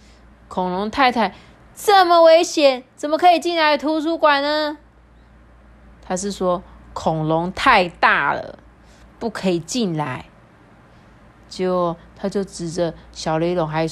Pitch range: 170-275 Hz